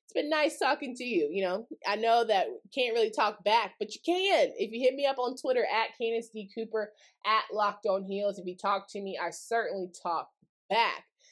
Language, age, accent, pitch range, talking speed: English, 20-39, American, 195-270 Hz, 210 wpm